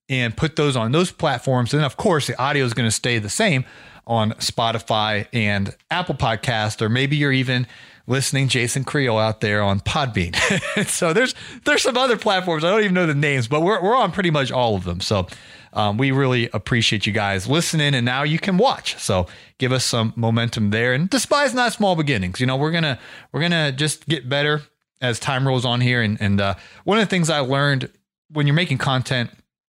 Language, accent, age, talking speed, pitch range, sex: English, American, 30-49, 215 wpm, 115-170 Hz, male